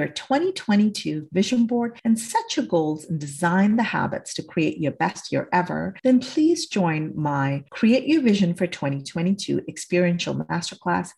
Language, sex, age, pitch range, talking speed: English, female, 40-59, 165-225 Hz, 150 wpm